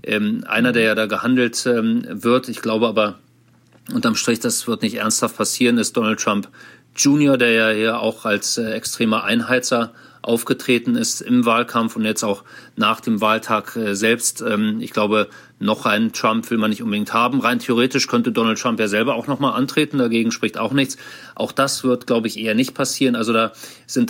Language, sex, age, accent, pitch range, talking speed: German, male, 40-59, German, 110-150 Hz, 180 wpm